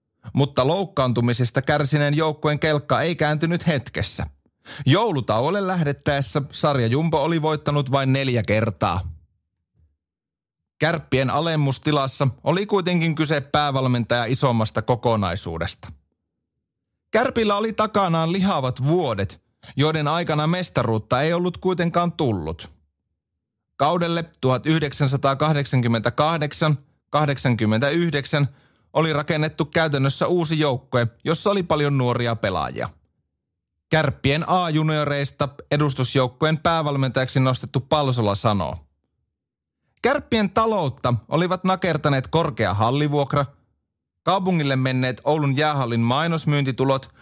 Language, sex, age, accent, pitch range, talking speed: Finnish, male, 30-49, native, 120-160 Hz, 85 wpm